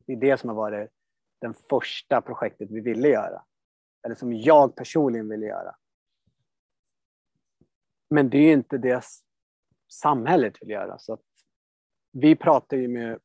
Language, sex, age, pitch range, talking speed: Swedish, male, 30-49, 110-140 Hz, 150 wpm